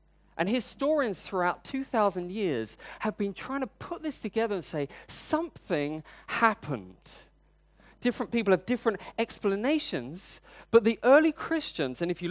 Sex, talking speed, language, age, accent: male, 135 wpm, English, 30-49, British